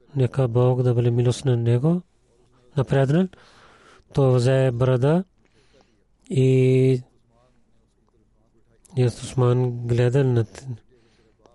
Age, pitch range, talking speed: 30-49, 120-135 Hz, 90 wpm